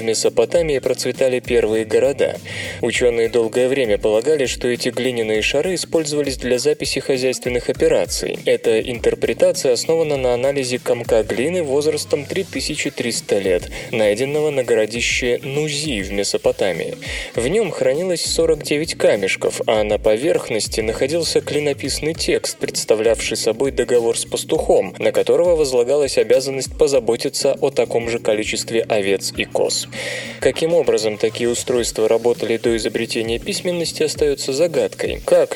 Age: 20-39